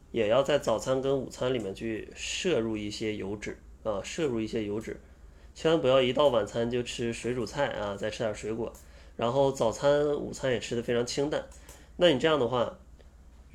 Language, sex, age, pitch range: Chinese, male, 20-39, 80-130 Hz